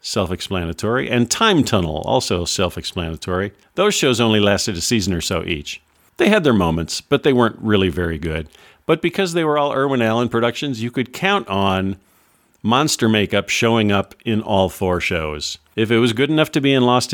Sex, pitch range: male, 85-115 Hz